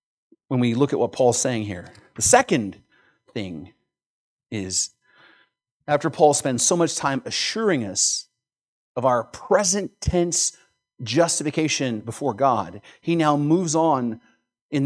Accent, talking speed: American, 130 wpm